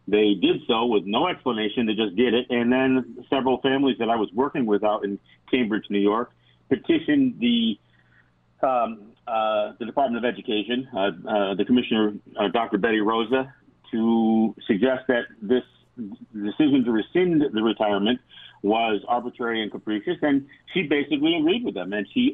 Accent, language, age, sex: American, English, 50-69, male